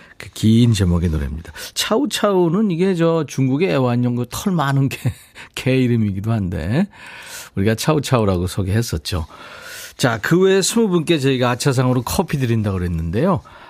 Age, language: 40-59, Korean